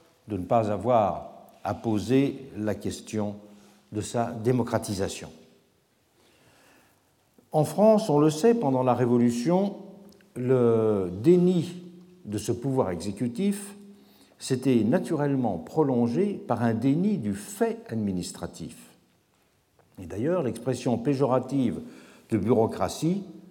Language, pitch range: French, 115-175 Hz